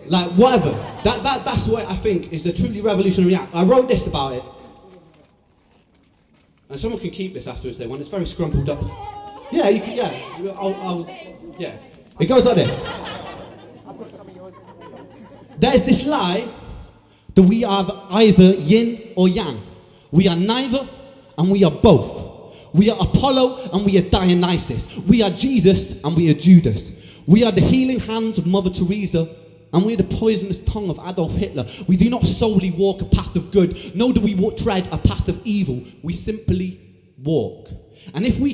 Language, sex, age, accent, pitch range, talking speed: English, male, 30-49, British, 170-220 Hz, 180 wpm